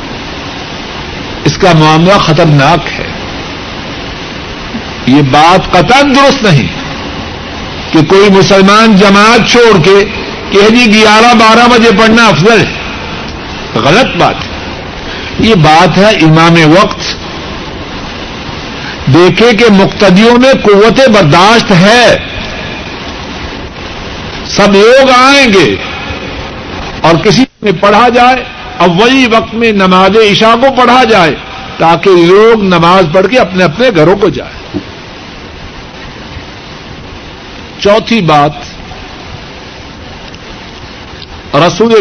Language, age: Urdu, 60-79